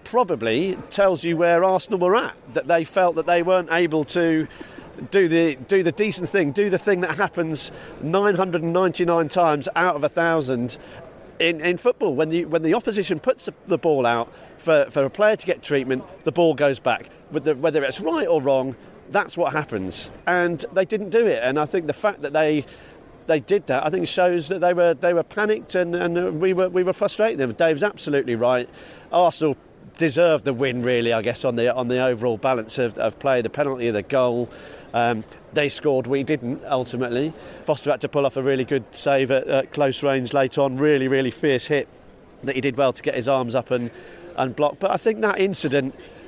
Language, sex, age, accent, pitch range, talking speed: English, male, 40-59, British, 135-175 Hz, 215 wpm